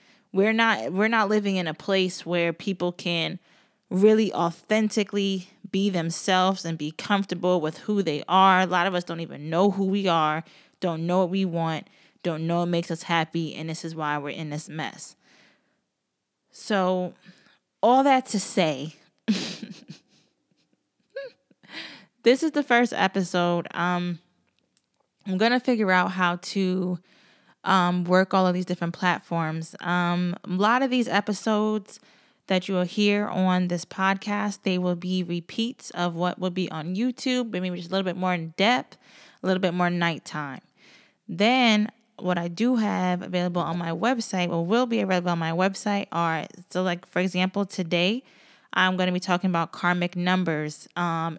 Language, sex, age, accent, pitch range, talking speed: English, female, 20-39, American, 170-205 Hz, 170 wpm